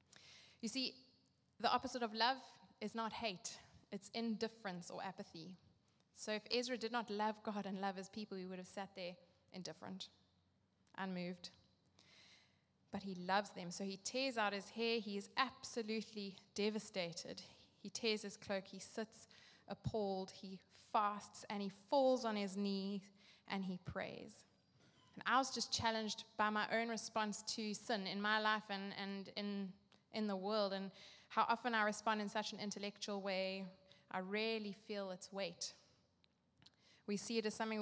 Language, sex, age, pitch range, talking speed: English, female, 20-39, 195-230 Hz, 165 wpm